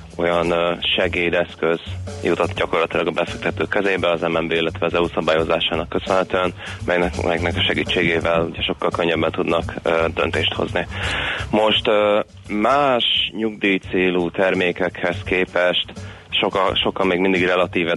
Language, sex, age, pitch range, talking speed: Hungarian, male, 30-49, 85-95 Hz, 125 wpm